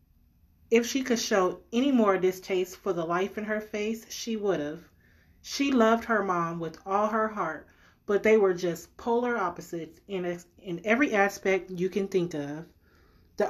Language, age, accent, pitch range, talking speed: English, 30-49, American, 170-215 Hz, 170 wpm